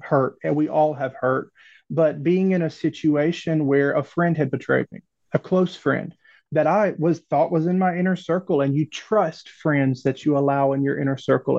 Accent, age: American, 30-49